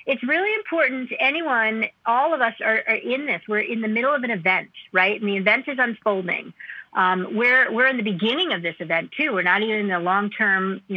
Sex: female